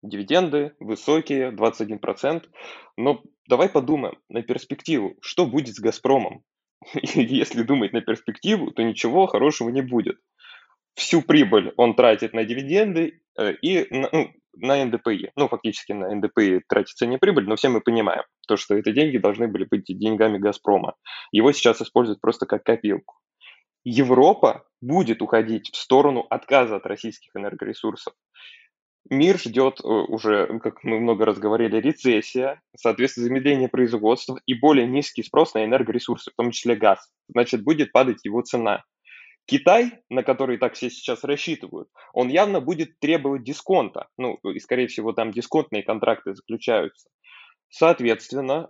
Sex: male